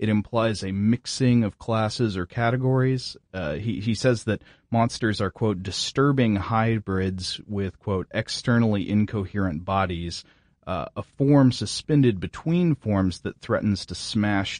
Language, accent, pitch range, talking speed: English, American, 95-120 Hz, 135 wpm